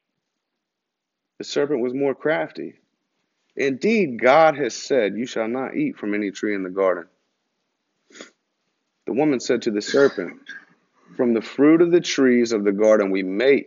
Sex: male